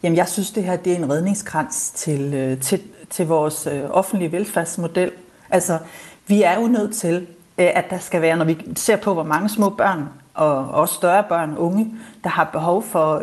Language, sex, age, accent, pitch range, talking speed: Danish, female, 40-59, native, 170-210 Hz, 190 wpm